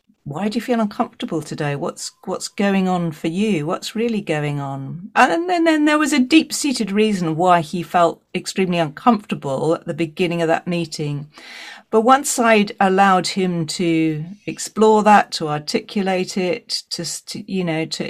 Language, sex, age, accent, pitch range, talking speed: English, female, 40-59, British, 165-210 Hz, 175 wpm